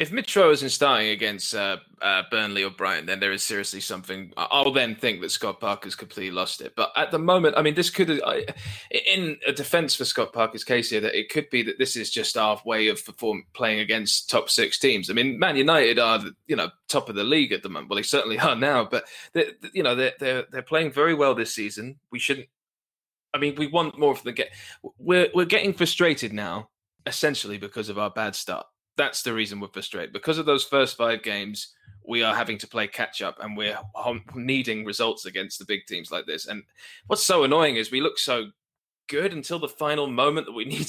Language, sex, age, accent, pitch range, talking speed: English, male, 20-39, British, 110-160 Hz, 220 wpm